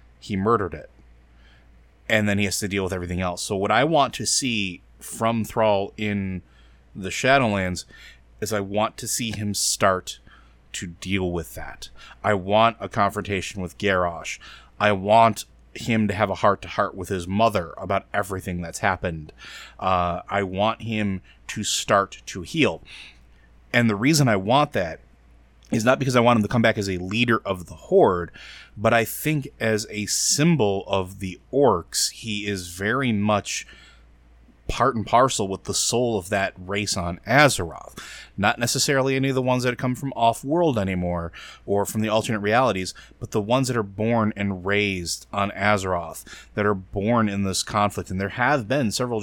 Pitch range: 90-115 Hz